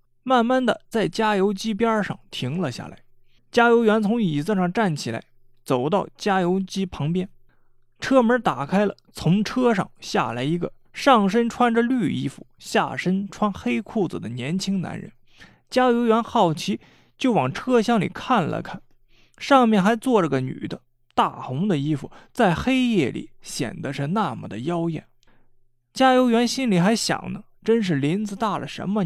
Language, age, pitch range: Chinese, 20-39, 145-230 Hz